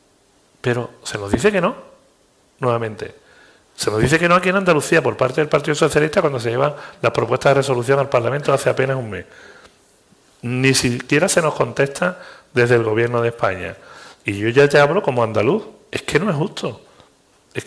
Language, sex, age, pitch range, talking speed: Spanish, male, 40-59, 115-155 Hz, 190 wpm